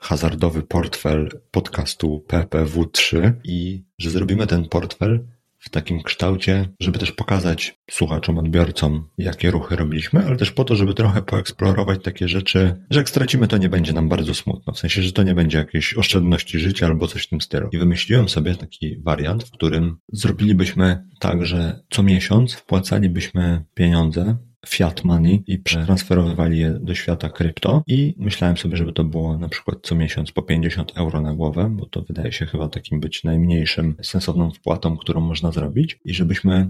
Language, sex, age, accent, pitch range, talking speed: Polish, male, 30-49, native, 85-100 Hz, 170 wpm